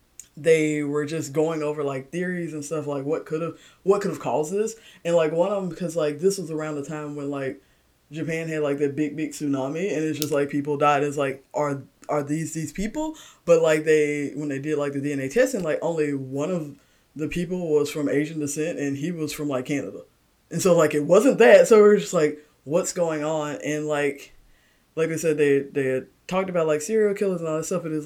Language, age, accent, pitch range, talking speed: English, 20-39, American, 145-165 Hz, 235 wpm